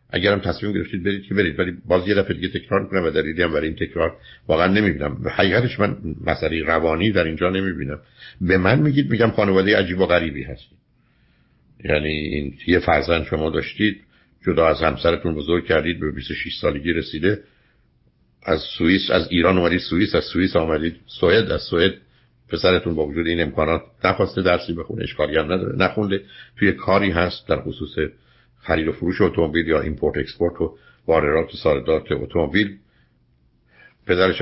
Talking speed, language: 155 wpm, Persian